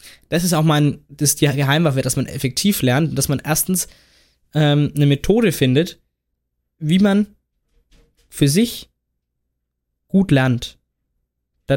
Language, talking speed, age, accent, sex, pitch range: German, 125 wpm, 20-39, German, male, 130-175 Hz